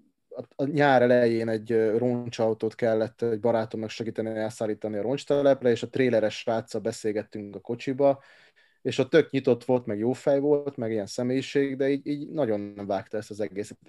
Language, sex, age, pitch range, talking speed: Hungarian, male, 30-49, 110-130 Hz, 170 wpm